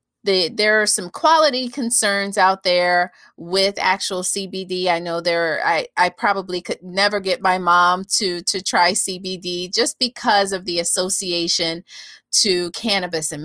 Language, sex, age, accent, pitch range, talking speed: English, female, 30-49, American, 180-220 Hz, 150 wpm